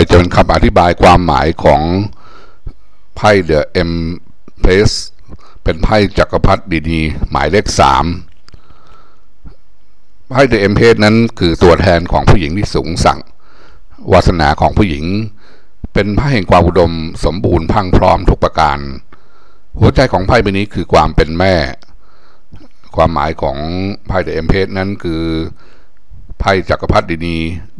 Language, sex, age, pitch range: Thai, male, 60-79, 80-100 Hz